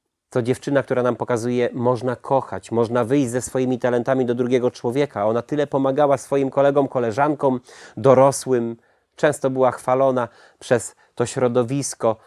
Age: 30-49